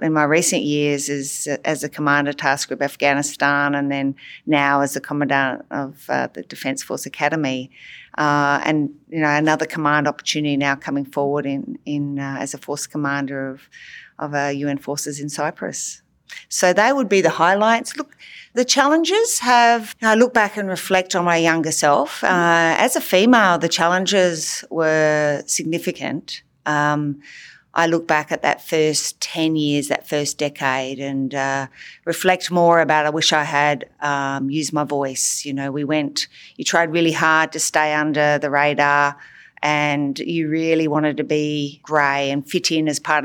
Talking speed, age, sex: 175 wpm, 40-59, female